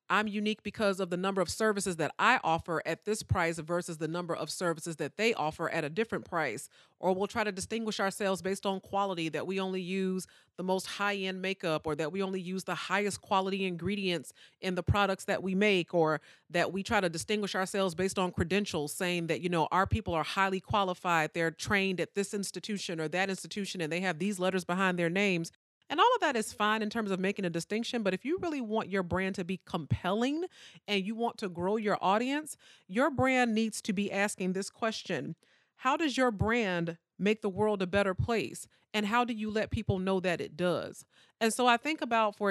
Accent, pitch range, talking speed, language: American, 180-210 Hz, 220 wpm, English